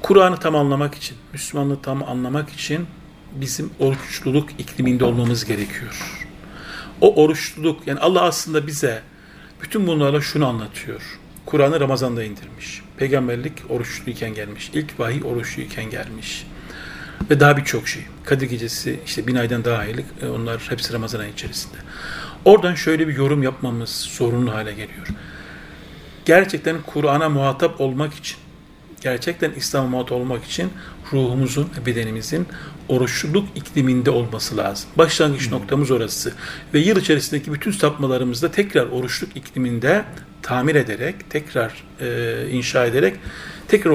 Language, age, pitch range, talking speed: Turkish, 40-59, 125-160 Hz, 125 wpm